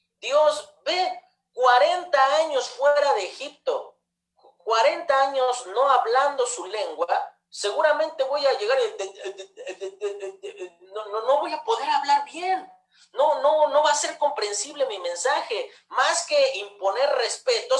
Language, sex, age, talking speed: Spanish, male, 40-59, 130 wpm